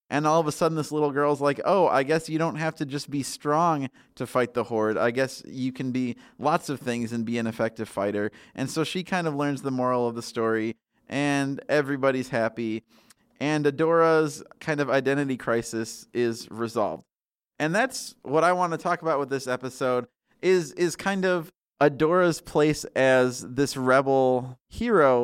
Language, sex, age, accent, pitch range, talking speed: English, male, 20-39, American, 120-150 Hz, 190 wpm